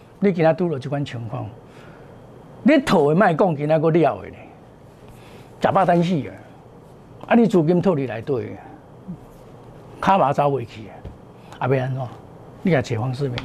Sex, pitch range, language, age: male, 130-185 Hz, Chinese, 50-69